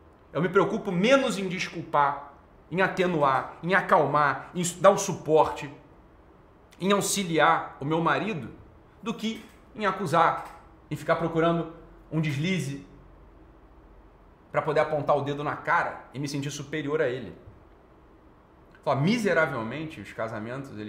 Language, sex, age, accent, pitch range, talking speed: Portuguese, male, 40-59, Brazilian, 125-175 Hz, 125 wpm